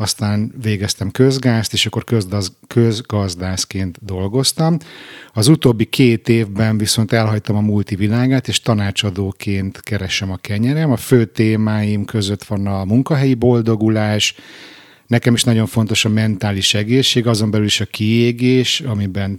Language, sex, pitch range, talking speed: Hungarian, male, 105-125 Hz, 130 wpm